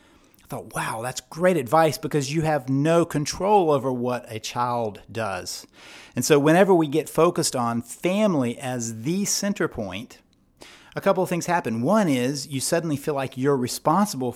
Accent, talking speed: American, 170 wpm